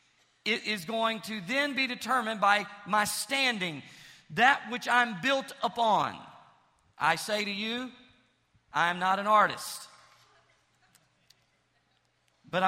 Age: 50-69